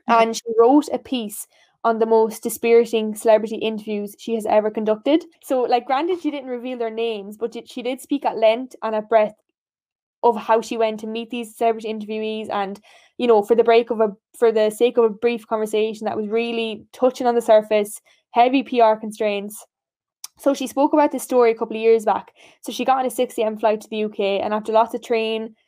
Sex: female